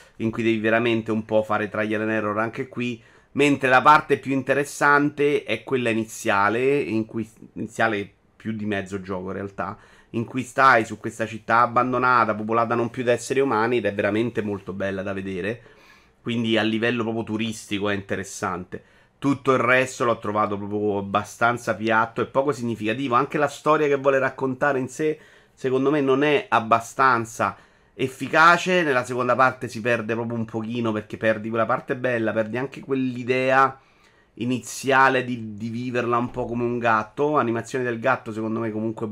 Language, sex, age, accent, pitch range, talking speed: Italian, male, 30-49, native, 110-130 Hz, 170 wpm